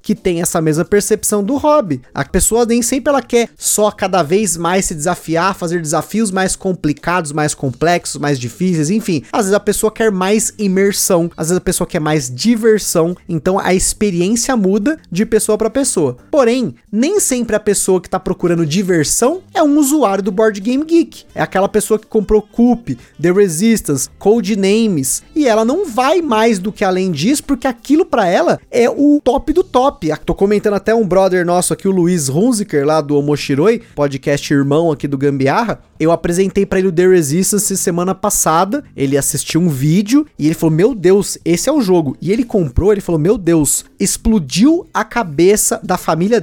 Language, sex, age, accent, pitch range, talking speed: Portuguese, male, 20-39, Brazilian, 170-235 Hz, 185 wpm